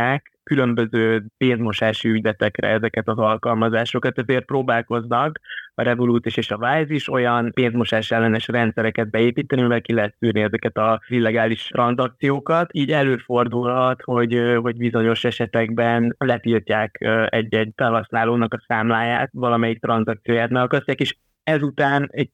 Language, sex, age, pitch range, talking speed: Hungarian, male, 20-39, 115-125 Hz, 115 wpm